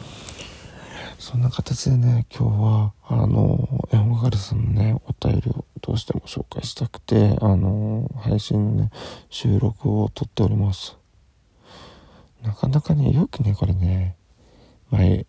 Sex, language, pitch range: male, Japanese, 100-125 Hz